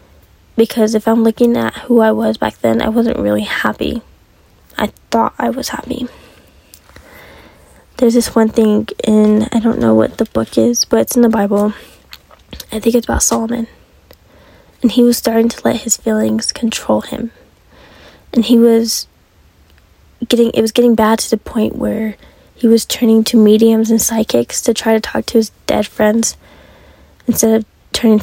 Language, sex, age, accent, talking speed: English, female, 10-29, American, 170 wpm